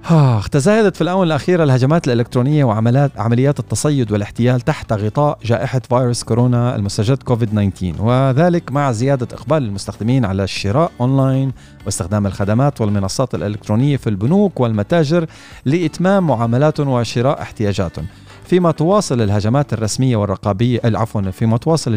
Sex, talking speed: male, 115 wpm